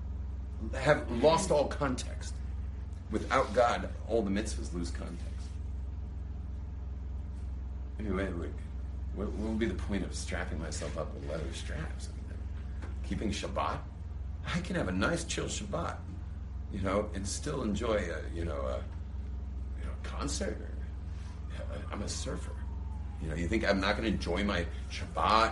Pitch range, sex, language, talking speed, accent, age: 75-85 Hz, male, English, 150 wpm, American, 40-59